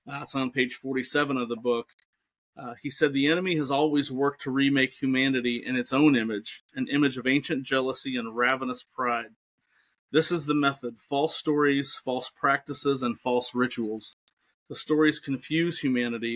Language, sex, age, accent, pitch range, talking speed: English, male, 40-59, American, 120-140 Hz, 170 wpm